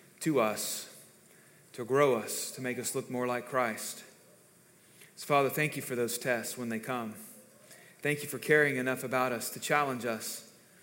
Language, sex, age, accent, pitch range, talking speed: English, male, 30-49, American, 125-160 Hz, 175 wpm